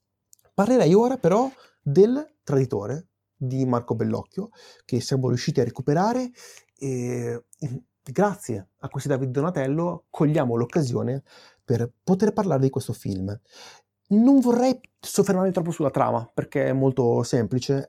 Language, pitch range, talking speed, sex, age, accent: Italian, 120-170 Hz, 125 wpm, male, 30-49, native